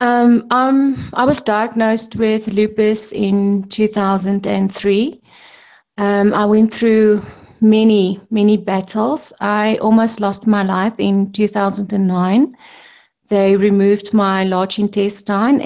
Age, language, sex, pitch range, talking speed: 30-49, English, female, 190-215 Hz, 105 wpm